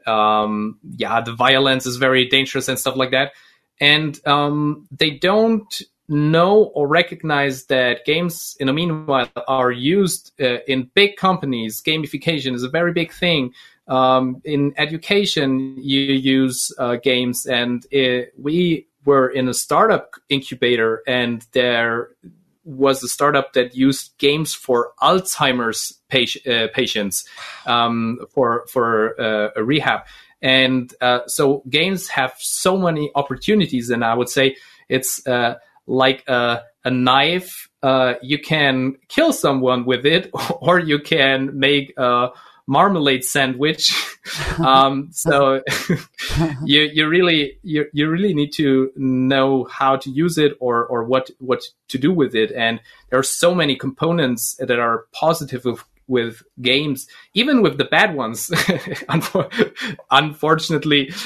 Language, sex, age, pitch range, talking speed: English, male, 30-49, 125-150 Hz, 135 wpm